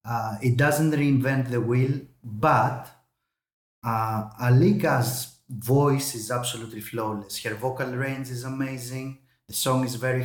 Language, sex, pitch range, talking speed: English, male, 110-135 Hz, 130 wpm